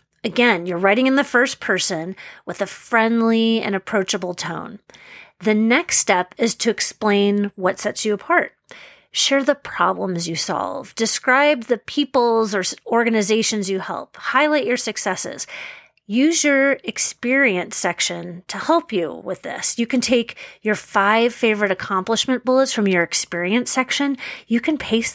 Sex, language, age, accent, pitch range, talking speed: female, English, 30-49, American, 190-245 Hz, 150 wpm